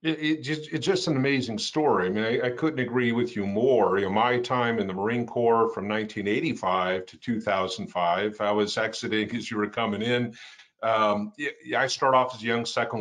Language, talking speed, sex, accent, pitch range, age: English, 215 wpm, male, American, 105-125 Hz, 50-69